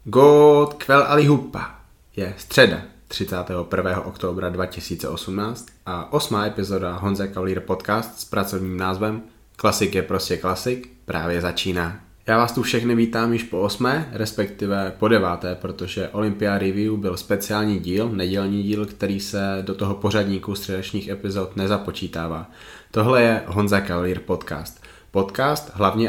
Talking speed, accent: 135 wpm, native